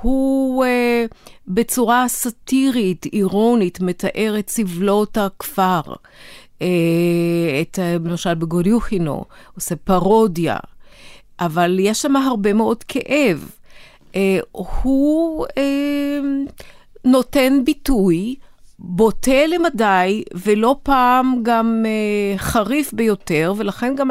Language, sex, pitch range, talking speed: Hebrew, female, 180-245 Hz, 90 wpm